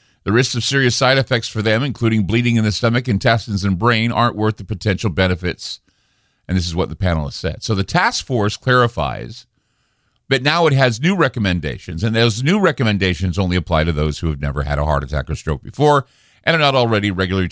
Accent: American